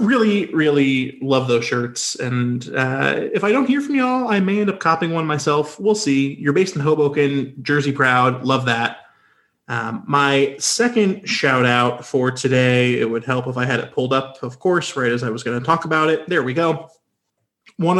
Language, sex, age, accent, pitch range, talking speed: English, male, 30-49, American, 125-155 Hz, 200 wpm